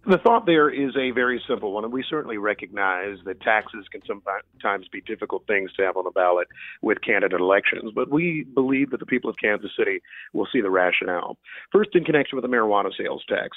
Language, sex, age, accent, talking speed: English, male, 50-69, American, 210 wpm